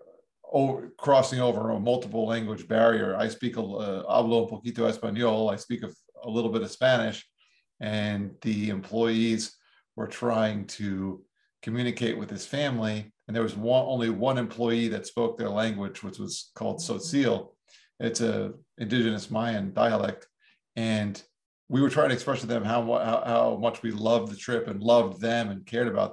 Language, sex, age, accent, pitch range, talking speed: English, male, 40-59, American, 110-125 Hz, 170 wpm